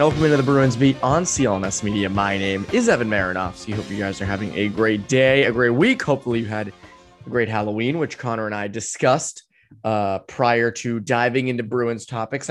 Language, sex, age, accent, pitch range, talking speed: English, male, 20-39, American, 115-155 Hz, 205 wpm